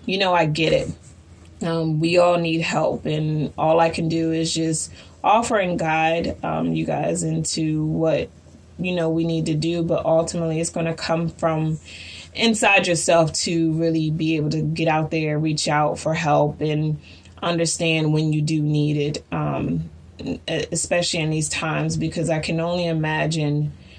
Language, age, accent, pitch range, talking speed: English, 20-39, American, 150-165 Hz, 175 wpm